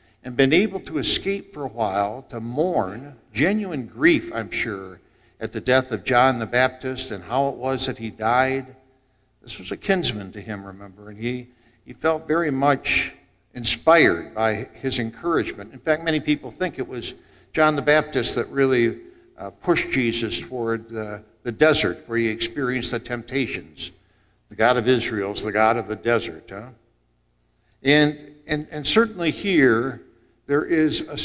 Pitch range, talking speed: 110-145 Hz, 170 wpm